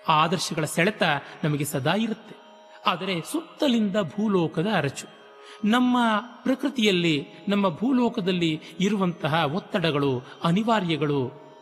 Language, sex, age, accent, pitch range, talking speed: Kannada, male, 30-49, native, 145-215 Hz, 85 wpm